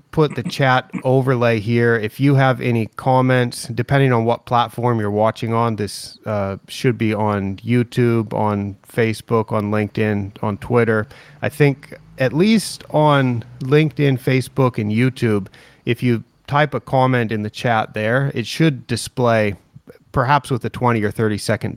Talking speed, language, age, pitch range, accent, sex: 155 wpm, English, 30-49, 105-130 Hz, American, male